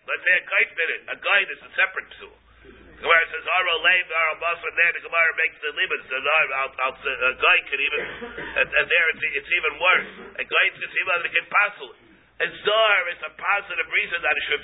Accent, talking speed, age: American, 200 wpm, 50-69